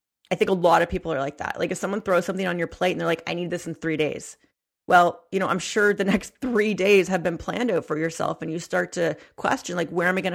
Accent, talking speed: American, 295 wpm